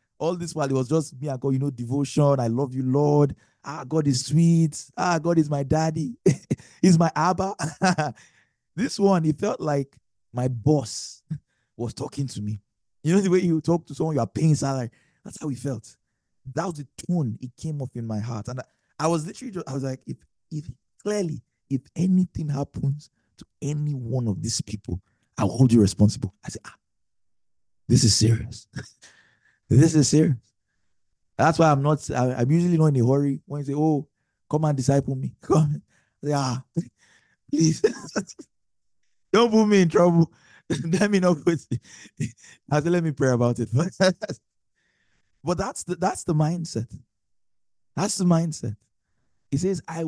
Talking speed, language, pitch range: 175 wpm, English, 120-160 Hz